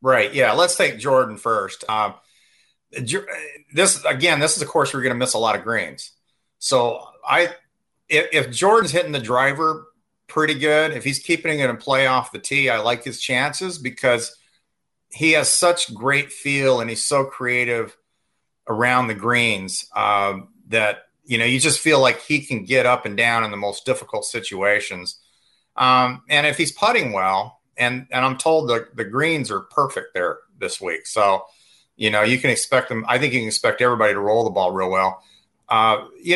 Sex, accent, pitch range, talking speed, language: male, American, 115-150 Hz, 190 wpm, English